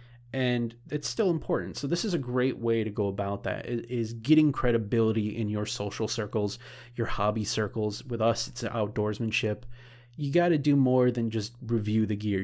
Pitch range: 110-125 Hz